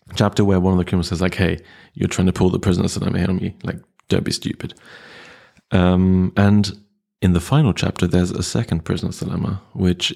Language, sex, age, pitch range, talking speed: English, male, 30-49, 85-95 Hz, 200 wpm